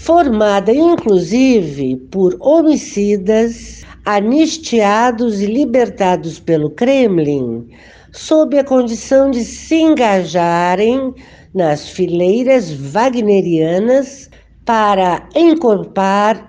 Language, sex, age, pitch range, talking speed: Portuguese, female, 60-79, 175-255 Hz, 75 wpm